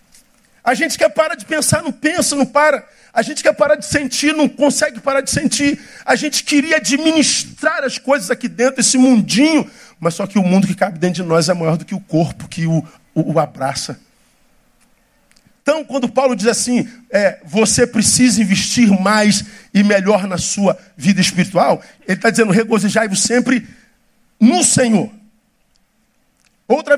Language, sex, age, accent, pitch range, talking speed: Portuguese, male, 50-69, Brazilian, 195-255 Hz, 170 wpm